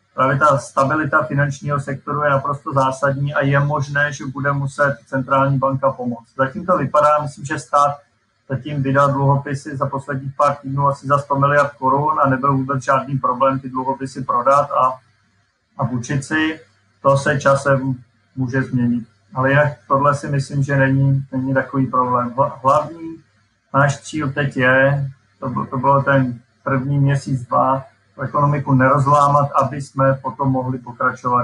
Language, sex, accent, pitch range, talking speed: Czech, male, native, 130-140 Hz, 155 wpm